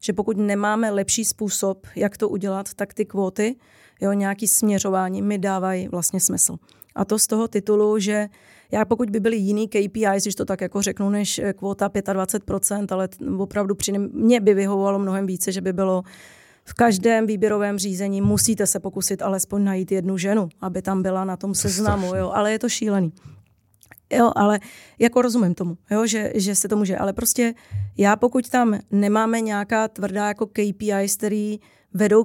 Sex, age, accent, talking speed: female, 30-49, native, 175 wpm